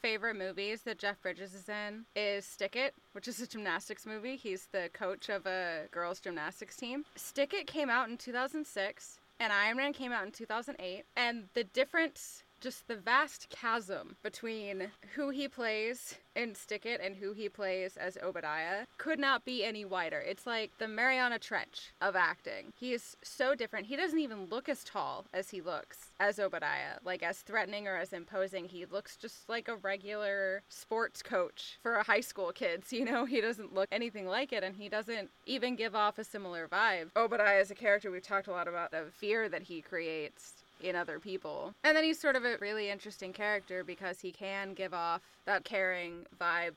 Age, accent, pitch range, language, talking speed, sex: 20-39, American, 185-225 Hz, English, 195 wpm, female